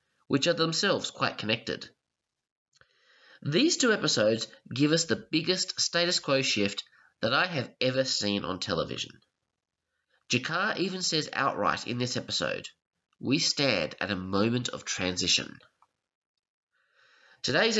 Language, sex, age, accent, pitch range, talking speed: English, male, 20-39, Australian, 105-170 Hz, 125 wpm